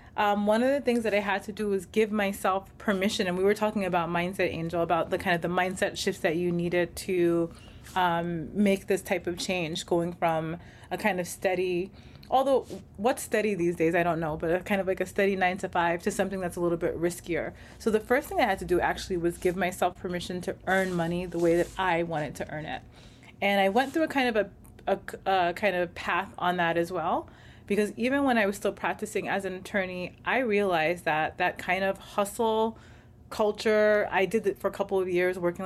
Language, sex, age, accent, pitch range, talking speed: English, female, 30-49, American, 175-205 Hz, 230 wpm